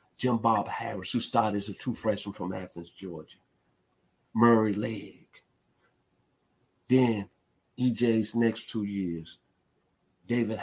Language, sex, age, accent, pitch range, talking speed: English, male, 50-69, American, 100-115 Hz, 105 wpm